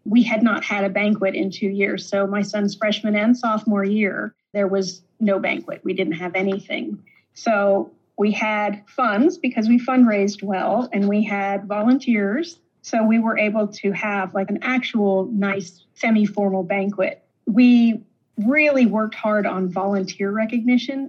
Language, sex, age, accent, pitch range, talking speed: English, female, 40-59, American, 195-225 Hz, 155 wpm